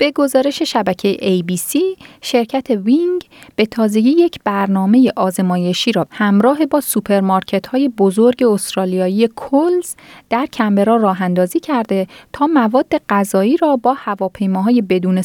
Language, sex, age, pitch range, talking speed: Persian, female, 30-49, 190-260 Hz, 120 wpm